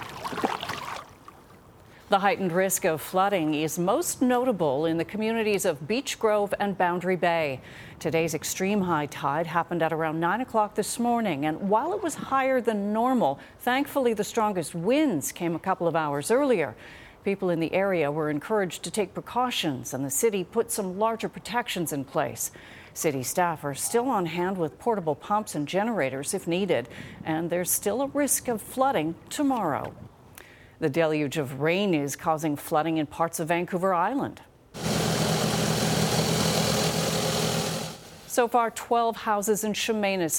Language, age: English, 40-59